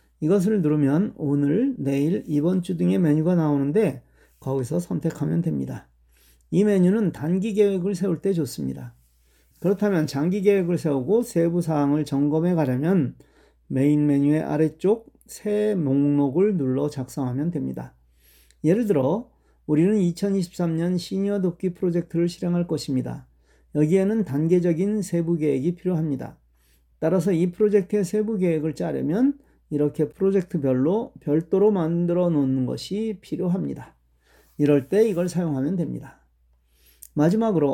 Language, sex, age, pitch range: Korean, male, 40-59, 140-190 Hz